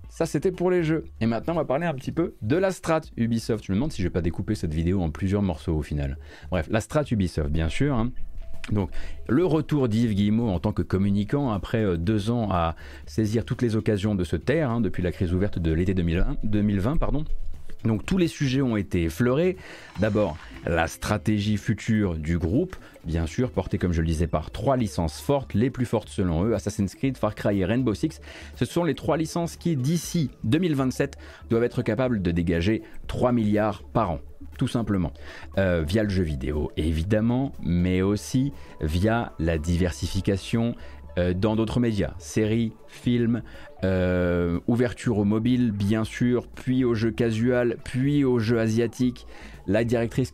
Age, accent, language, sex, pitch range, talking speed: 30-49, French, French, male, 90-125 Hz, 185 wpm